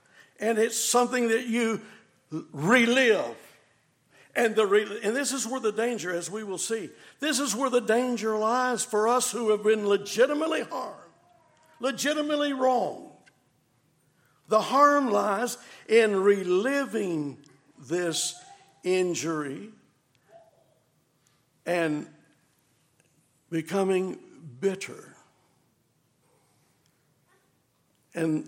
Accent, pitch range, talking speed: American, 155-225 Hz, 95 wpm